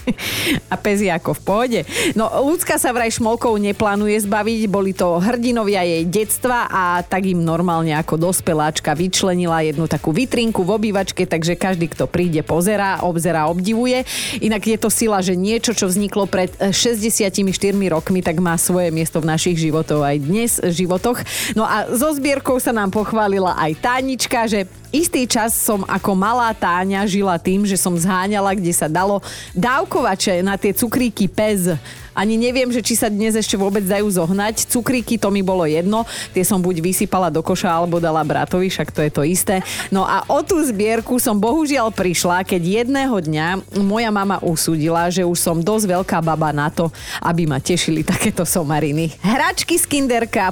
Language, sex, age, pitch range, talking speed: Slovak, female, 30-49, 180-230 Hz, 175 wpm